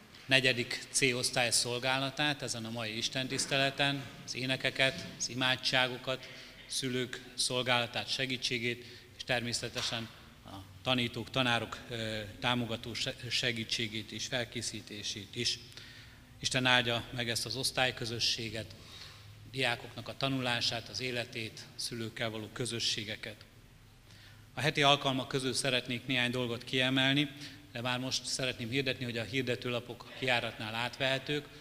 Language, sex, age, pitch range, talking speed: Hungarian, male, 30-49, 115-130 Hz, 110 wpm